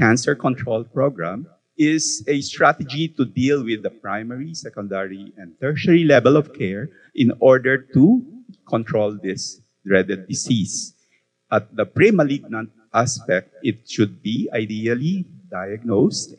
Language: Filipino